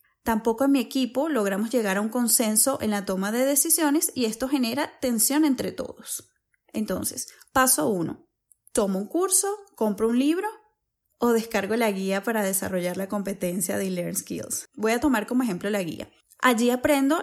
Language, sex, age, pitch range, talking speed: Spanish, female, 10-29, 210-275 Hz, 170 wpm